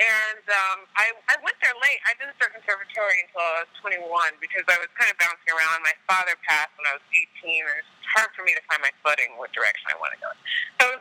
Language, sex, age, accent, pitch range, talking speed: English, female, 30-49, American, 165-215 Hz, 260 wpm